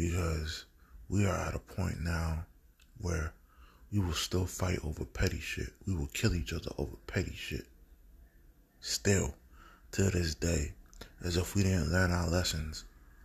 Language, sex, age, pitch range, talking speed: English, male, 20-39, 70-95 Hz, 155 wpm